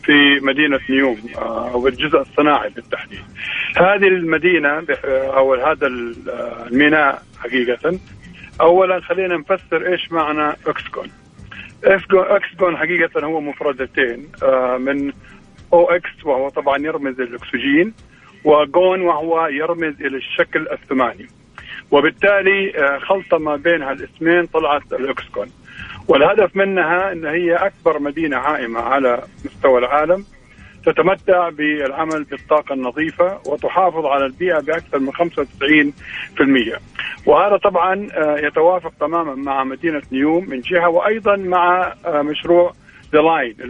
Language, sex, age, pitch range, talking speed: Arabic, male, 50-69, 145-175 Hz, 105 wpm